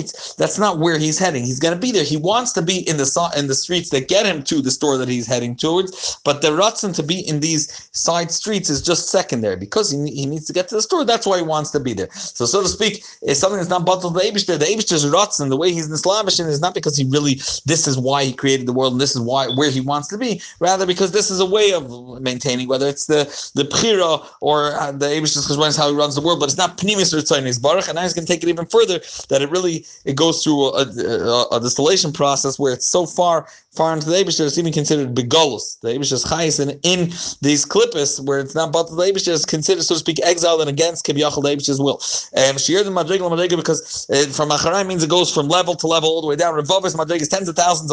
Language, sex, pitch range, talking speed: English, male, 140-180 Hz, 265 wpm